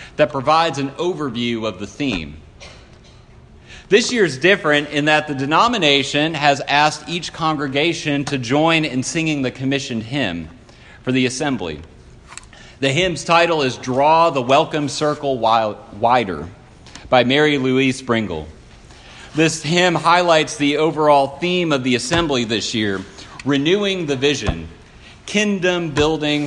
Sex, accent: male, American